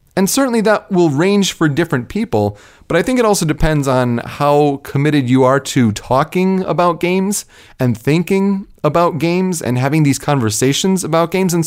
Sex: male